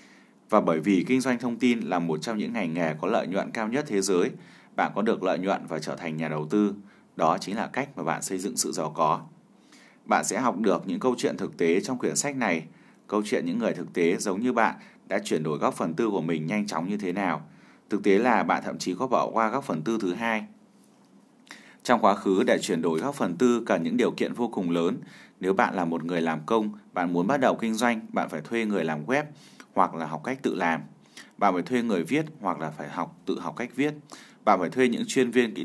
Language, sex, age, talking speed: Vietnamese, male, 20-39, 255 wpm